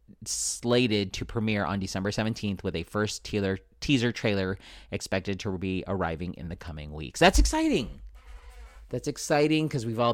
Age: 30-49